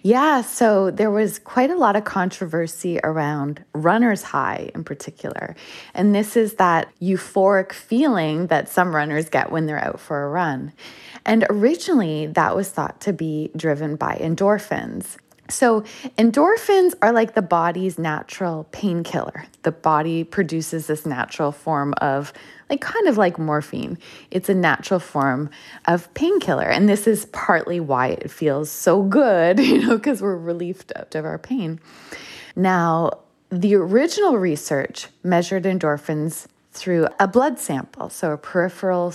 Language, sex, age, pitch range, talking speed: English, female, 20-39, 160-225 Hz, 145 wpm